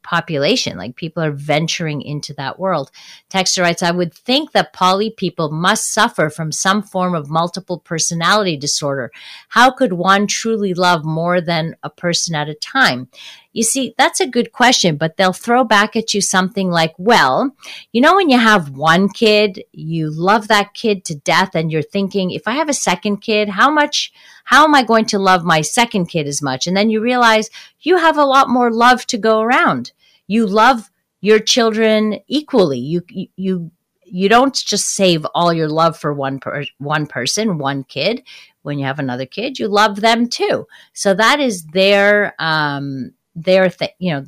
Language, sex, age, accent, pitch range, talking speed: English, female, 40-59, American, 160-215 Hz, 190 wpm